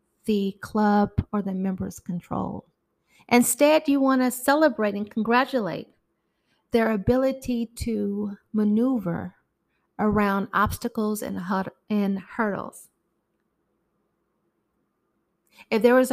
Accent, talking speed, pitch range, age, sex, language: American, 95 wpm, 210-250 Hz, 30-49, female, English